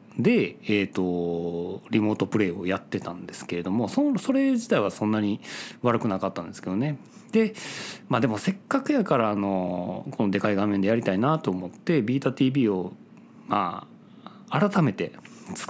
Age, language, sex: 40-59, Japanese, male